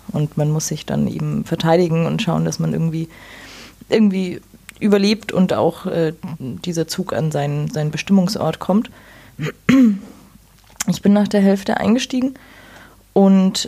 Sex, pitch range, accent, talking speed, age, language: female, 170-200 Hz, German, 135 wpm, 20-39, German